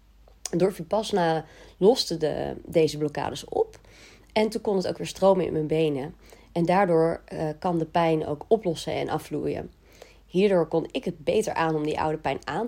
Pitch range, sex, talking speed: 150-185 Hz, female, 180 wpm